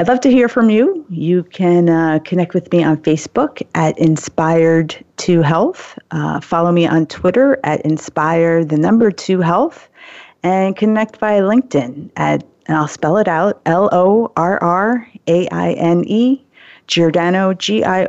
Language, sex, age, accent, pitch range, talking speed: English, female, 30-49, American, 165-215 Hz, 165 wpm